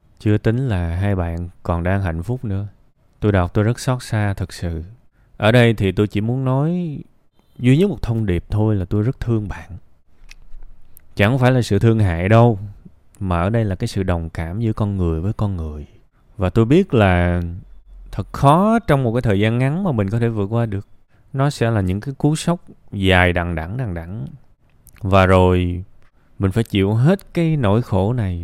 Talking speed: 205 wpm